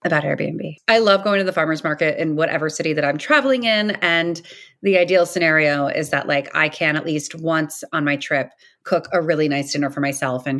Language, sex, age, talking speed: English, female, 30-49, 220 wpm